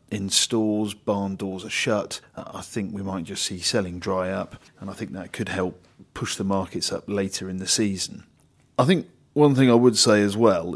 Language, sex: English, male